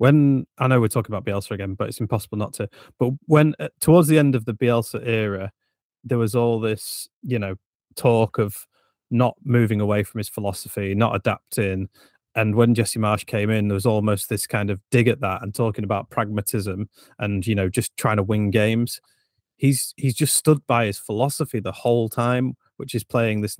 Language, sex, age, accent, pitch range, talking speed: English, male, 30-49, British, 105-125 Hz, 200 wpm